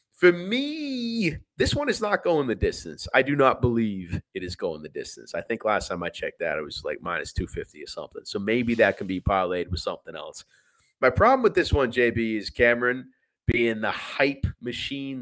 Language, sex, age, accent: English, male, 30-49, American